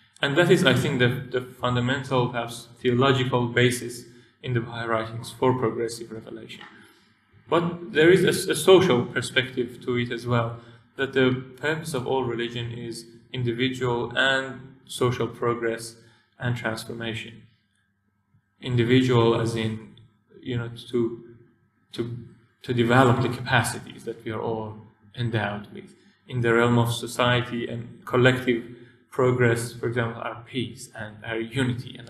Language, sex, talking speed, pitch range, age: English, male, 140 wpm, 115-130 Hz, 30-49